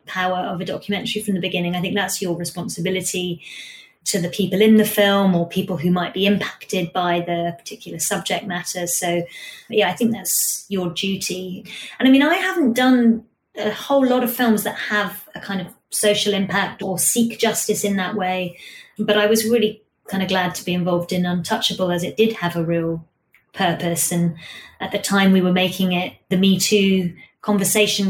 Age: 20-39